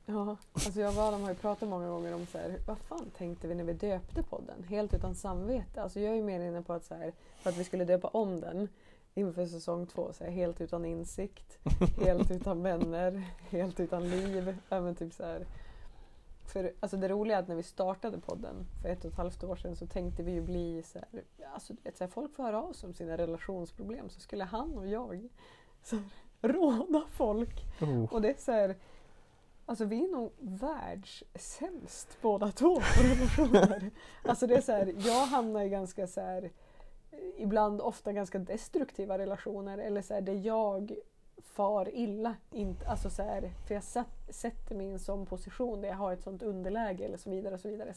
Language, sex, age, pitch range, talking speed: Swedish, female, 20-39, 180-220 Hz, 205 wpm